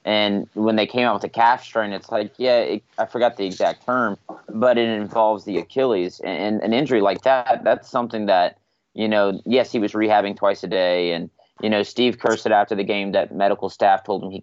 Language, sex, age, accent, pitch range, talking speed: English, male, 30-49, American, 100-120 Hz, 235 wpm